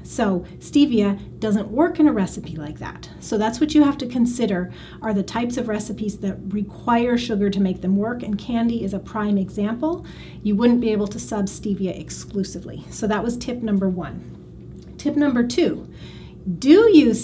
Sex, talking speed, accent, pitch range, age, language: female, 185 wpm, American, 195-235 Hz, 30-49, English